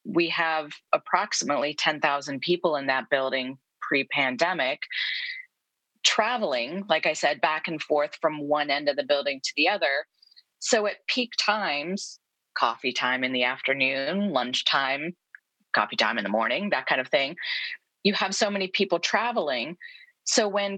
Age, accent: 30-49, American